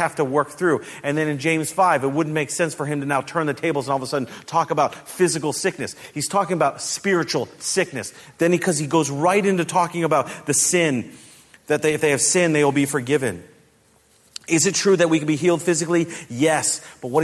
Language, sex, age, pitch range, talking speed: English, male, 40-59, 115-165 Hz, 225 wpm